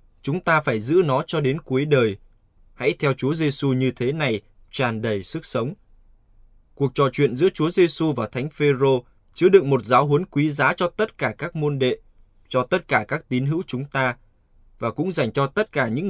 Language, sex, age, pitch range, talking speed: Vietnamese, male, 20-39, 110-150 Hz, 215 wpm